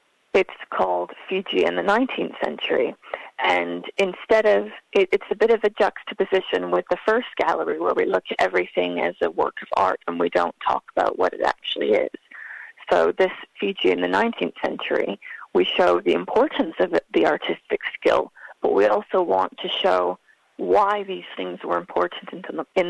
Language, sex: English, female